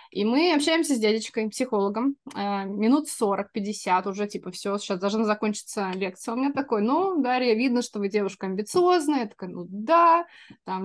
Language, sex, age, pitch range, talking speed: Russian, female, 20-39, 215-290 Hz, 165 wpm